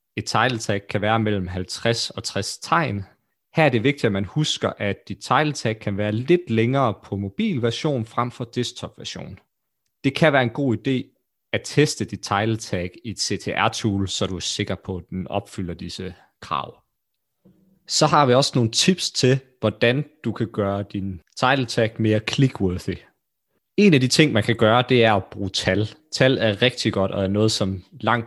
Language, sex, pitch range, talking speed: Danish, male, 100-135 Hz, 195 wpm